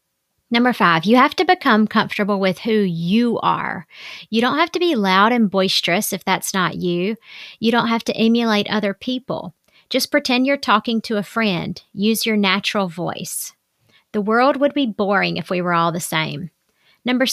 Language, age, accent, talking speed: English, 40-59, American, 185 wpm